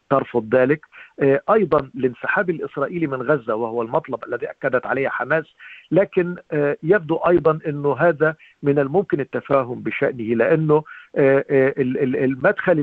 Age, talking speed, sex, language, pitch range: 50-69, 110 wpm, male, Arabic, 135-180 Hz